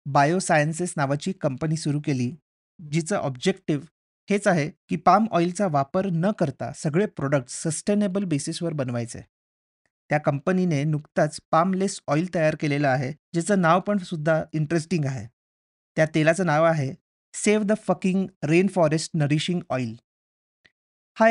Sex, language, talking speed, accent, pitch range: male, Marathi, 125 wpm, native, 145-190 Hz